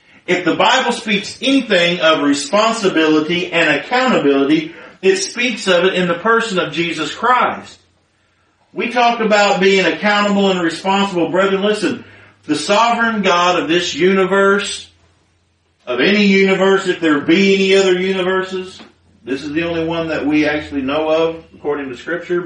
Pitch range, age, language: 150-215 Hz, 50-69, English